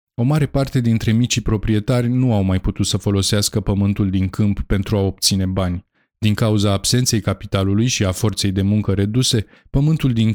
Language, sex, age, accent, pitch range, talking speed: Romanian, male, 20-39, native, 100-120 Hz, 180 wpm